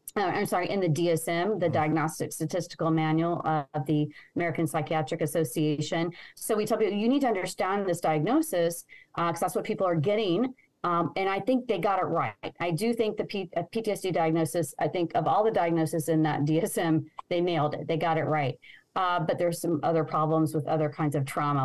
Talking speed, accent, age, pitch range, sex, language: 200 wpm, American, 30-49, 160-195 Hz, female, English